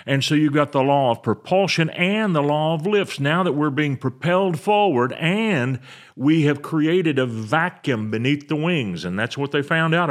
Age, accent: 50-69, American